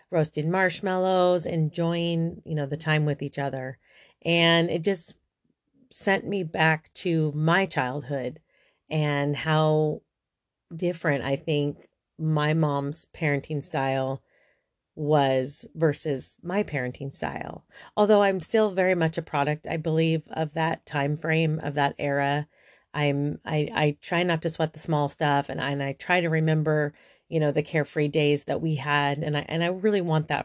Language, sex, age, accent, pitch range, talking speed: English, female, 30-49, American, 145-165 Hz, 160 wpm